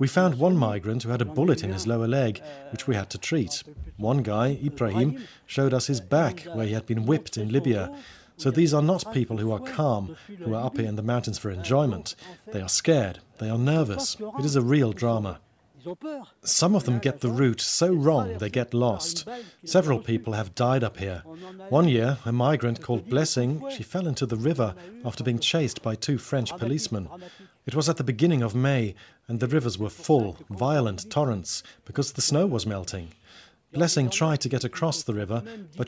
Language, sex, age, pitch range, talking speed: English, male, 40-59, 115-155 Hz, 200 wpm